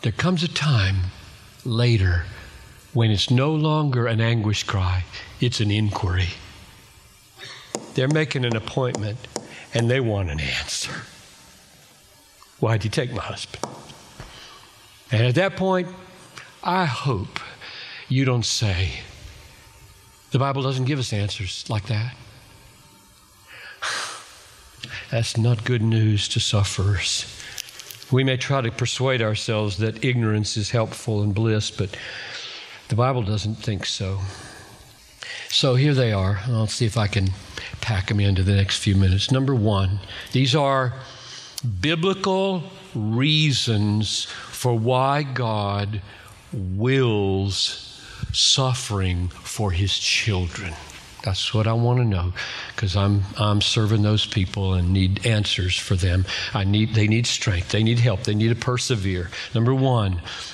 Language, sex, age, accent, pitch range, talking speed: English, male, 60-79, American, 100-130 Hz, 130 wpm